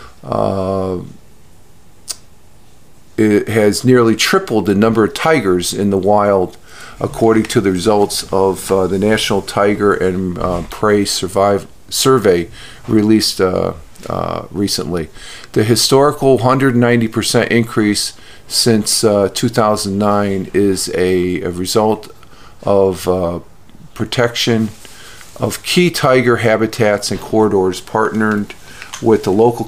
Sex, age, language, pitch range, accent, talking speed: male, 50-69, English, 95-115 Hz, American, 110 wpm